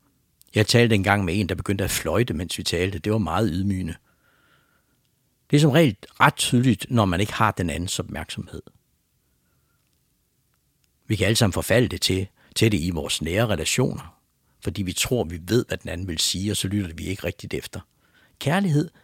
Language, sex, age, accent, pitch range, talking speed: English, male, 60-79, Danish, 90-125 Hz, 190 wpm